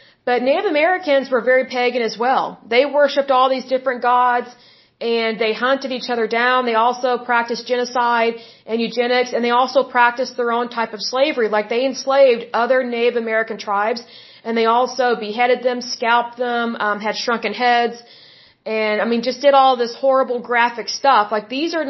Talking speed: 180 wpm